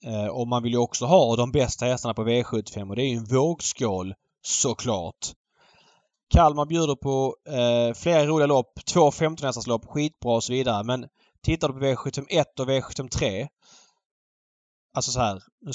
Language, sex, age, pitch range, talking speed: Swedish, male, 20-39, 115-145 Hz, 170 wpm